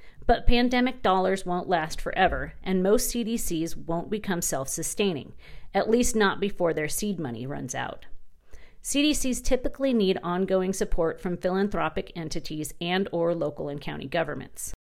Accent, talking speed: American, 140 wpm